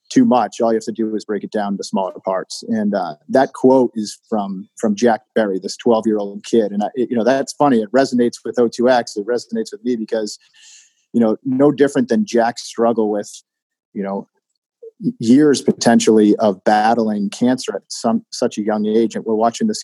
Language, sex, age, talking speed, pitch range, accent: English, male, 40-59, 205 wpm, 105-125 Hz, American